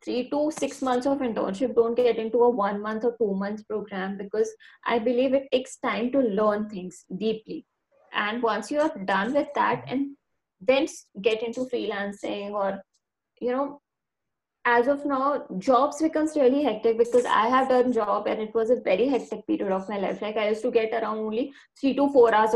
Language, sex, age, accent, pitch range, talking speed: Hindi, female, 20-39, native, 215-260 Hz, 195 wpm